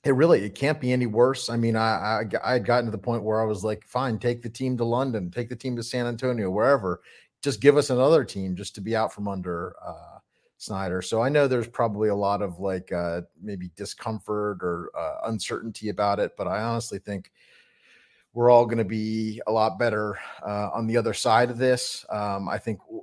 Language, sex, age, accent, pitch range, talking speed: English, male, 30-49, American, 100-120 Hz, 220 wpm